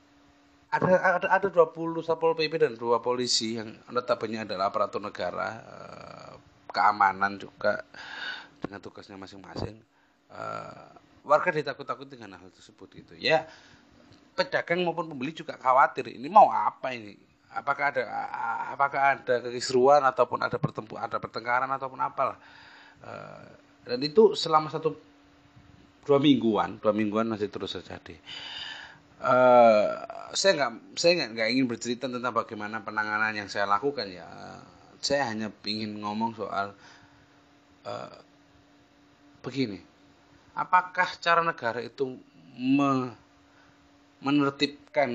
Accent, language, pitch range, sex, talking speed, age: native, Indonesian, 110-150 Hz, male, 120 wpm, 30-49